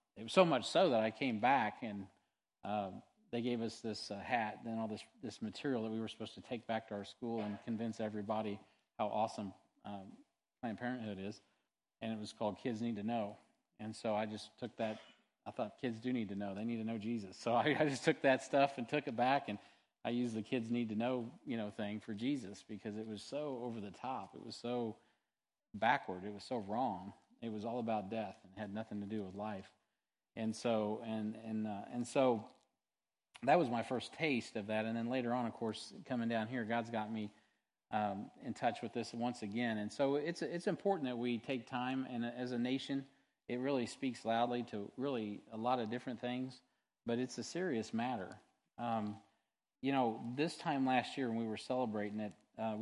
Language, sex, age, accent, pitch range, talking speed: English, male, 40-59, American, 110-125 Hz, 220 wpm